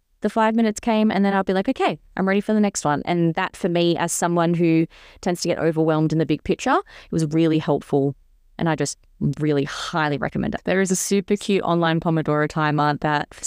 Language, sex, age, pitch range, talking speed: English, female, 20-39, 160-205 Hz, 230 wpm